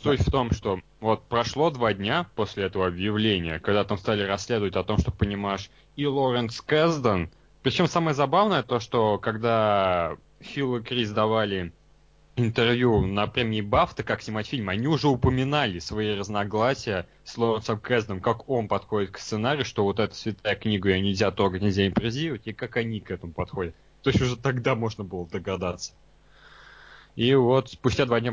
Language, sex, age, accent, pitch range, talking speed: Russian, male, 20-39, native, 100-125 Hz, 170 wpm